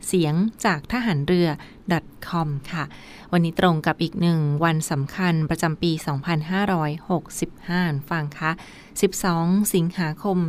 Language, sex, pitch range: Thai, female, 160-185 Hz